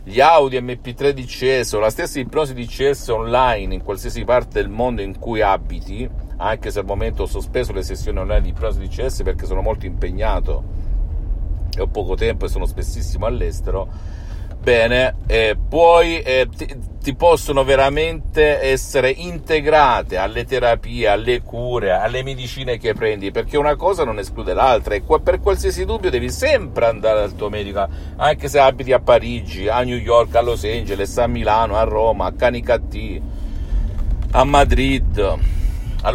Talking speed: 165 wpm